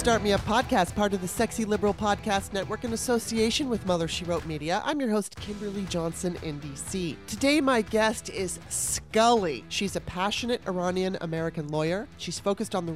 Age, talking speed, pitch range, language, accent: 30-49, 185 wpm, 180-235 Hz, English, American